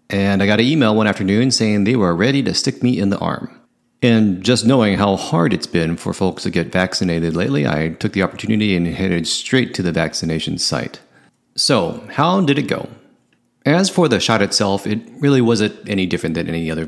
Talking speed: 210 wpm